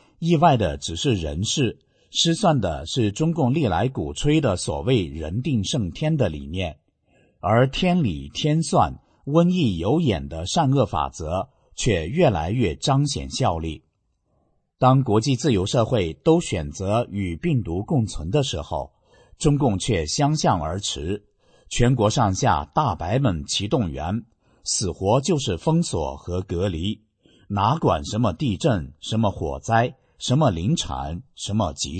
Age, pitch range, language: 50-69, 95-135 Hz, English